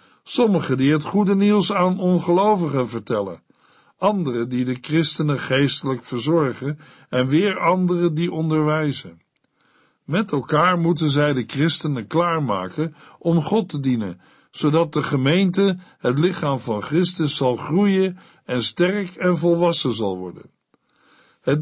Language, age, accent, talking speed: Dutch, 60-79, Dutch, 130 wpm